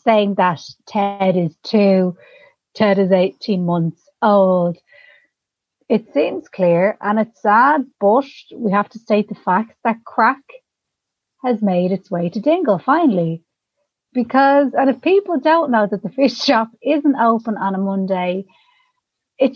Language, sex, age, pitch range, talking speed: English, female, 30-49, 185-240 Hz, 145 wpm